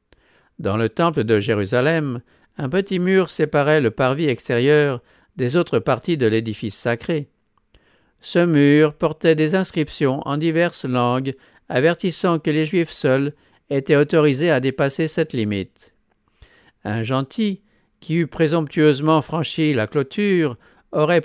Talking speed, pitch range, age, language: 130 wpm, 130-165 Hz, 60-79, English